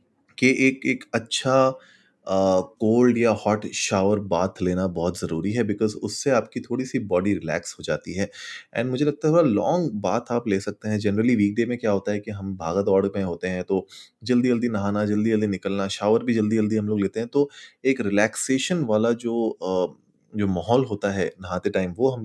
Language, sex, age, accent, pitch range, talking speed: Hindi, male, 30-49, native, 100-125 Hz, 195 wpm